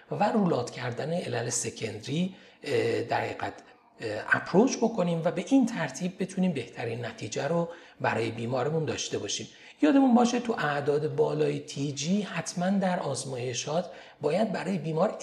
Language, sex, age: Persian, male, 40-59